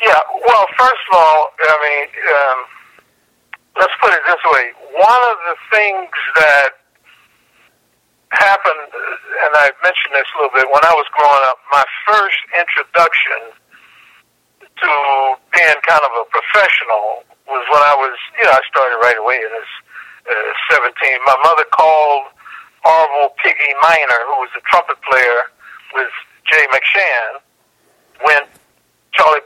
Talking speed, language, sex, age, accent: 140 wpm, English, male, 60-79, American